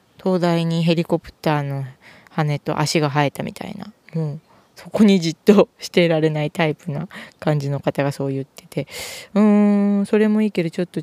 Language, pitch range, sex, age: Japanese, 145-180 Hz, female, 20-39